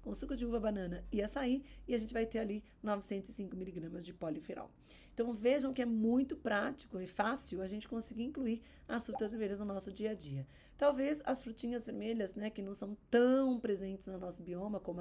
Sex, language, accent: female, Portuguese, Brazilian